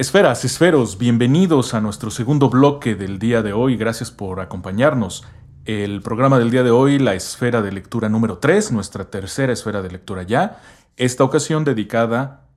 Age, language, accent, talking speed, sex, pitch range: 40-59, Spanish, Mexican, 165 wpm, male, 105-140 Hz